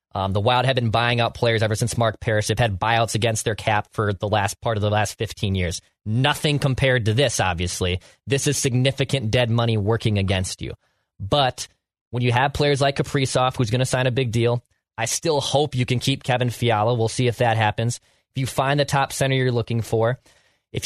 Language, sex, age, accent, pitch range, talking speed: English, male, 20-39, American, 115-145 Hz, 220 wpm